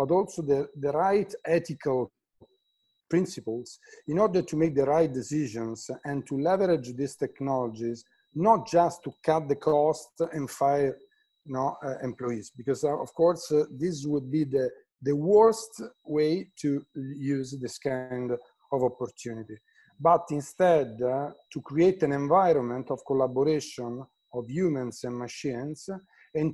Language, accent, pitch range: English, Italian, 125-170 Hz